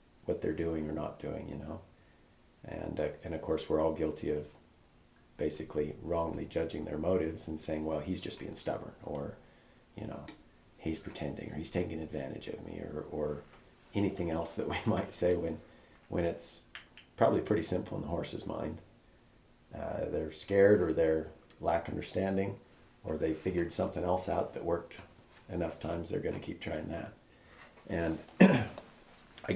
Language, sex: English, male